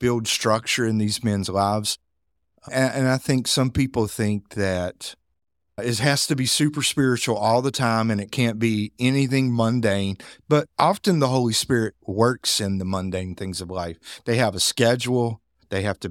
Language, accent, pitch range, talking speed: English, American, 95-120 Hz, 180 wpm